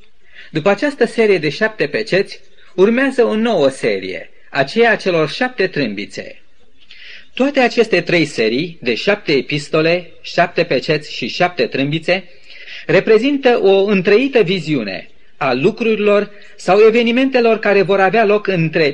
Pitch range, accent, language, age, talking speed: 160-215 Hz, native, Romanian, 30-49, 125 wpm